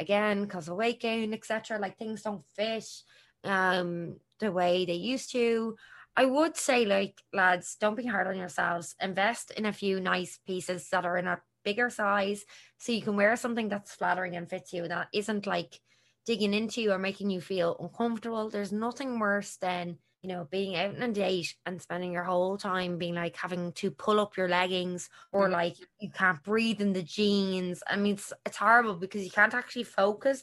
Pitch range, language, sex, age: 185-230 Hz, English, female, 20-39